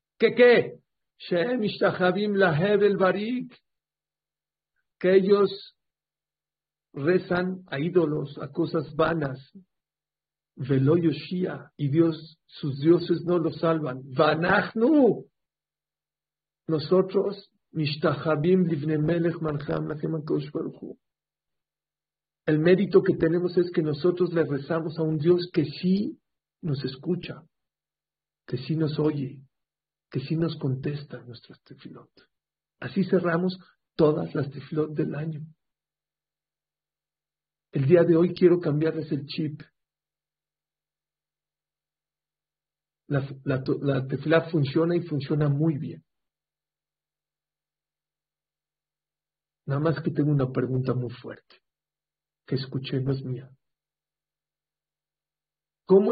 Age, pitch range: 50-69, 145-180 Hz